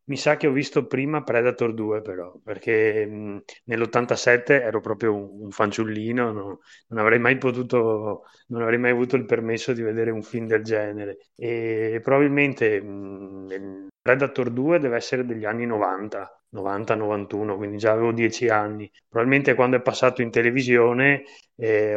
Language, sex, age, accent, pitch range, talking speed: Italian, male, 30-49, native, 110-130 Hz, 160 wpm